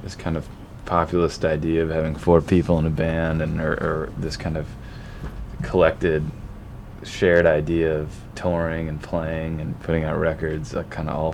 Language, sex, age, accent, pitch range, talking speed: English, male, 20-39, American, 80-90 Hz, 175 wpm